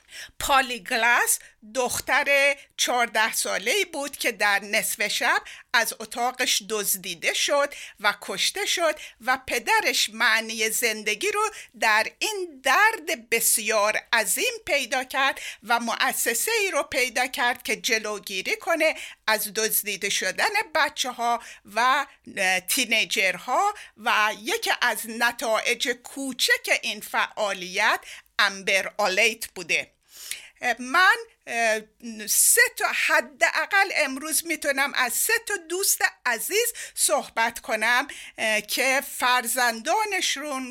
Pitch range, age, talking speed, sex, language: 225-335 Hz, 50-69, 105 wpm, female, Persian